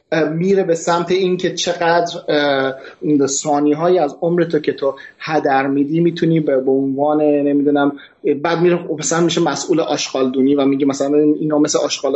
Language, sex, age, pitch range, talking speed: Persian, male, 30-49, 135-170 Hz, 150 wpm